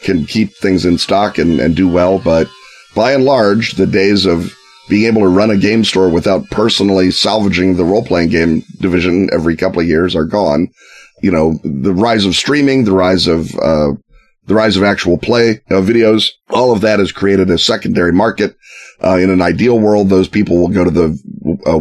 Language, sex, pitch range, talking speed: English, male, 85-105 Hz, 200 wpm